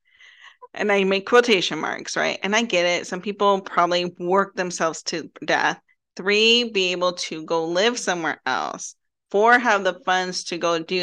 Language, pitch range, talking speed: English, 175-205 Hz, 175 wpm